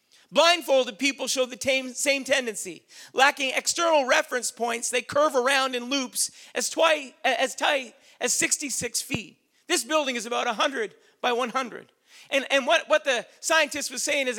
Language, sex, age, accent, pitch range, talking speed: English, male, 40-59, American, 255-310 Hz, 155 wpm